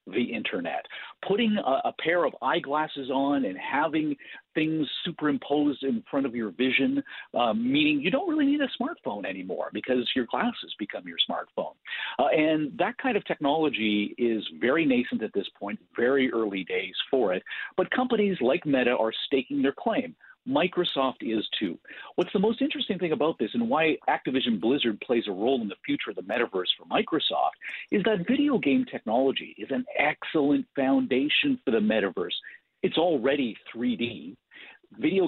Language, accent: English, American